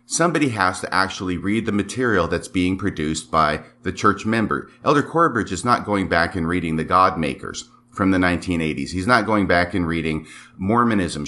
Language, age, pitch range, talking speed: English, 50-69, 85-110 Hz, 185 wpm